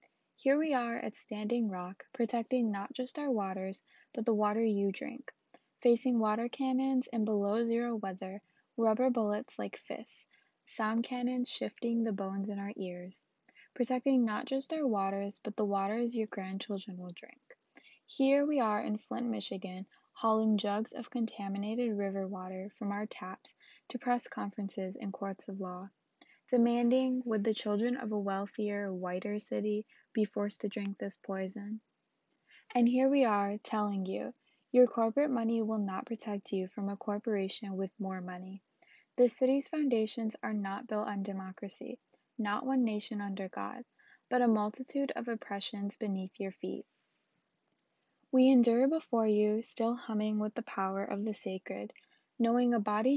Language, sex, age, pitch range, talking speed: English, female, 20-39, 200-240 Hz, 155 wpm